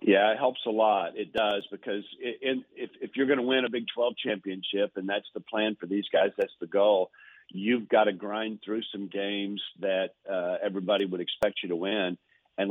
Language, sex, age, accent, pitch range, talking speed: English, male, 50-69, American, 100-120 Hz, 210 wpm